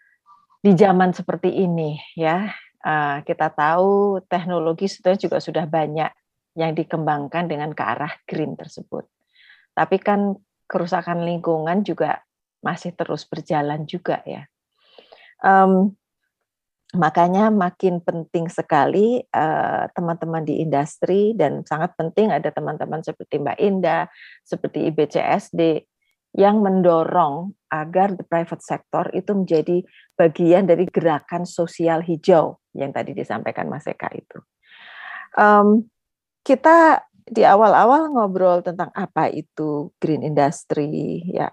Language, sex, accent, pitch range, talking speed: Indonesian, female, native, 155-190 Hz, 115 wpm